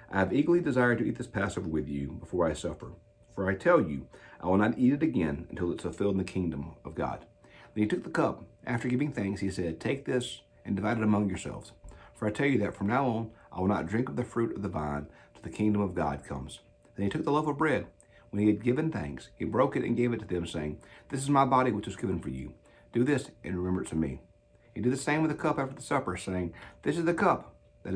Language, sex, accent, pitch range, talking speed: English, male, American, 85-120 Hz, 270 wpm